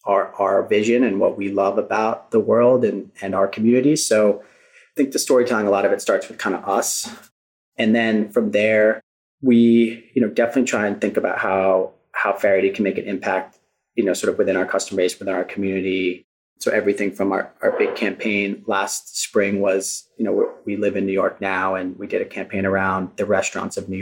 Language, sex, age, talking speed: English, male, 30-49, 215 wpm